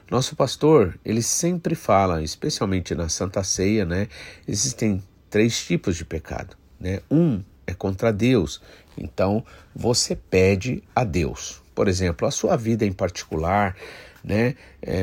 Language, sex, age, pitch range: Portuguese, male, 50-69, 90-120 Hz